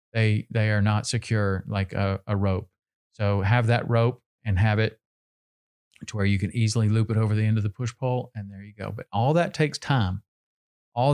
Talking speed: 215 wpm